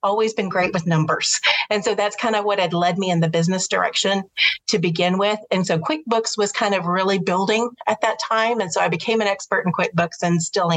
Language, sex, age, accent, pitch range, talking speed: English, female, 40-59, American, 180-225 Hz, 235 wpm